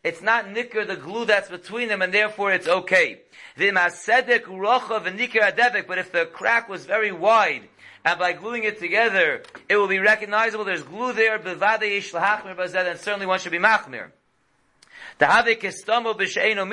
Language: English